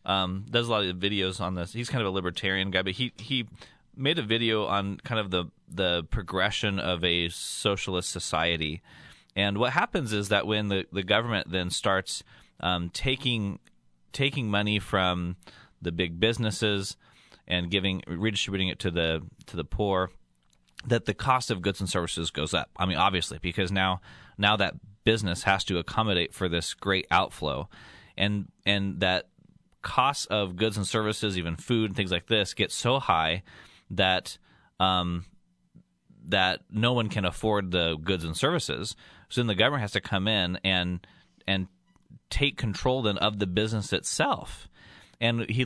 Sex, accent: male, American